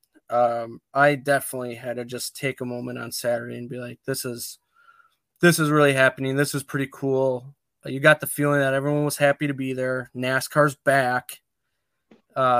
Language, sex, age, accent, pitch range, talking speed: English, male, 20-39, American, 130-155 Hz, 180 wpm